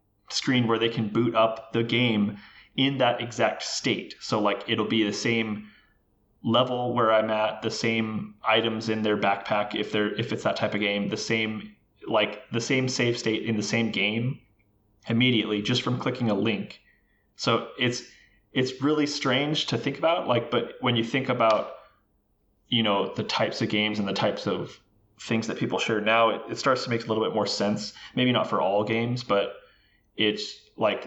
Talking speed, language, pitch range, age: 195 wpm, English, 105-115 Hz, 20-39